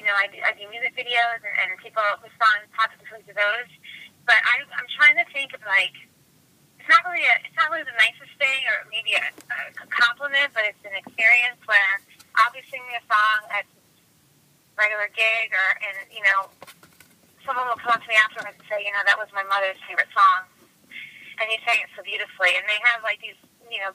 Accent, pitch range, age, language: American, 195-240 Hz, 20-39, English